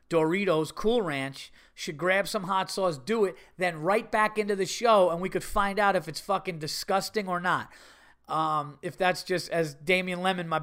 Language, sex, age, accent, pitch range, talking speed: English, male, 30-49, American, 145-195 Hz, 200 wpm